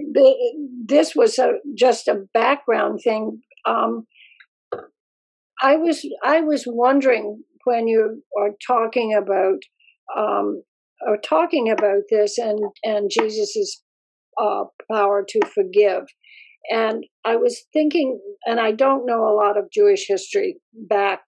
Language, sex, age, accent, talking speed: English, female, 60-79, American, 125 wpm